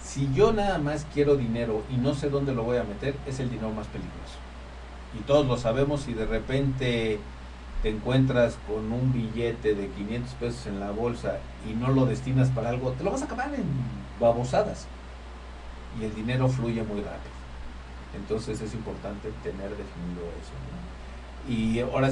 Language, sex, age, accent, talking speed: Spanish, male, 50-69, Mexican, 175 wpm